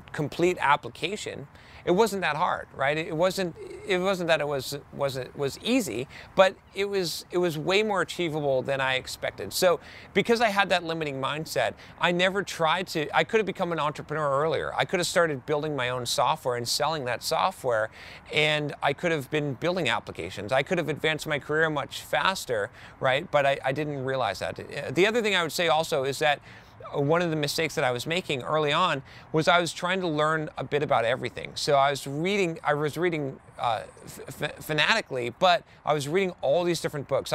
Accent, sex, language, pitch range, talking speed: American, male, English, 135-175 Hz, 200 wpm